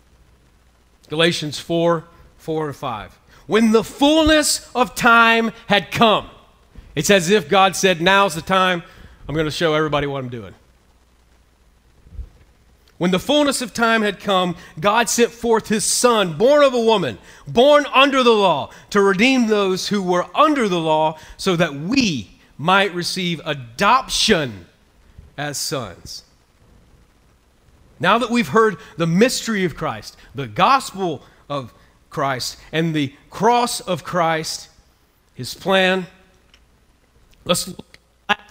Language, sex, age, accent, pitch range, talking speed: English, male, 40-59, American, 130-215 Hz, 130 wpm